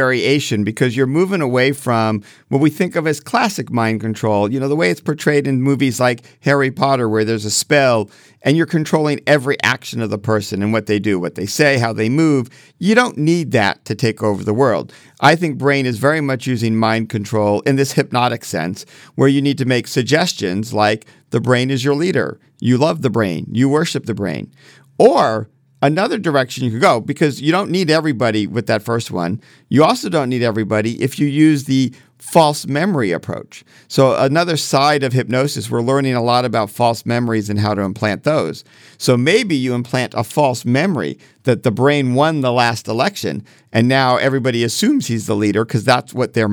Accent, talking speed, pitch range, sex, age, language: American, 205 wpm, 110-140 Hz, male, 50-69, English